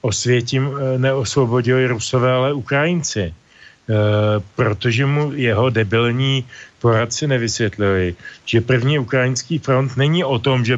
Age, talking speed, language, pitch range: 40-59, 105 wpm, Slovak, 115-135 Hz